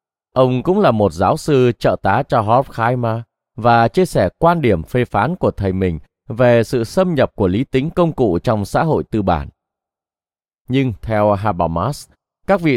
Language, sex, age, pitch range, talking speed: Vietnamese, male, 20-39, 100-145 Hz, 185 wpm